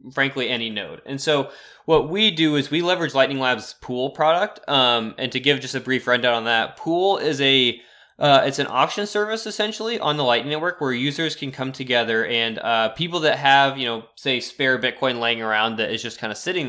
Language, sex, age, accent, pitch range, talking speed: English, male, 20-39, American, 115-140 Hz, 220 wpm